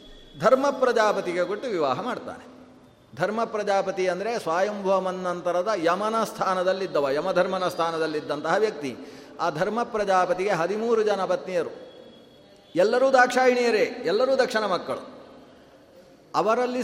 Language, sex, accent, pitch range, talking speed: Kannada, male, native, 175-225 Hz, 90 wpm